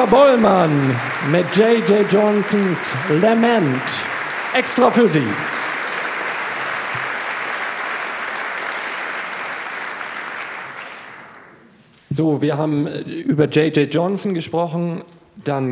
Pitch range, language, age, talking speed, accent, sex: 125-165 Hz, German, 50-69, 60 wpm, German, male